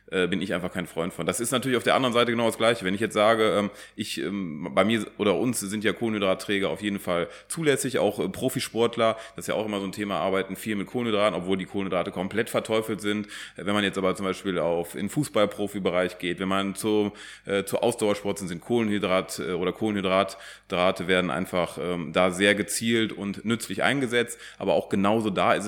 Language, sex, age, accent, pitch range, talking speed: German, male, 30-49, German, 95-110 Hz, 210 wpm